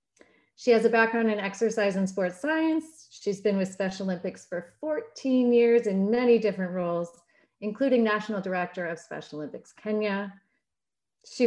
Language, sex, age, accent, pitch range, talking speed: English, female, 30-49, American, 175-235 Hz, 150 wpm